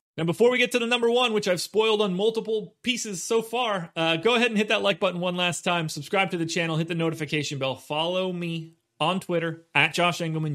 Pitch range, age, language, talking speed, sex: 155-210 Hz, 30-49, English, 240 wpm, male